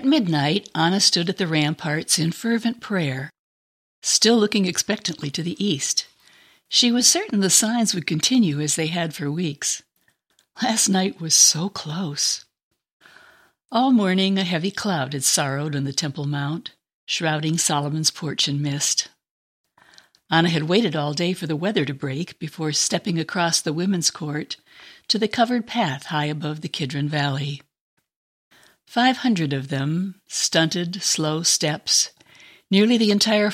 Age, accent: 60-79, American